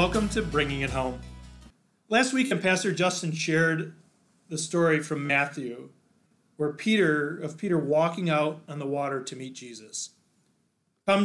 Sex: male